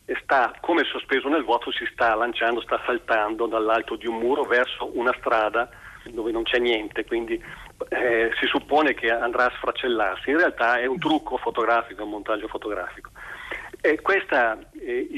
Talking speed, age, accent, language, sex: 165 wpm, 40-59, native, Italian, male